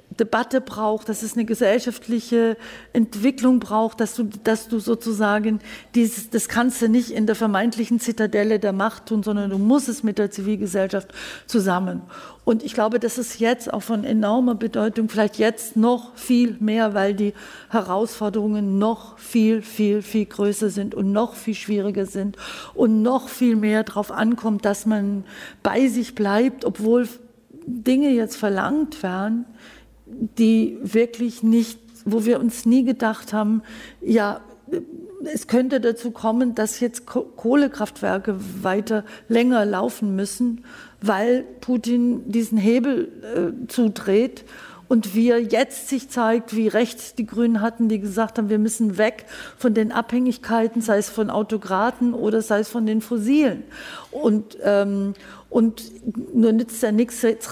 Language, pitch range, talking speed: German, 215-240 Hz, 150 wpm